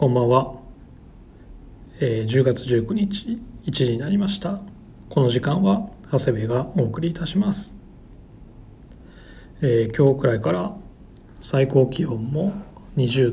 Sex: male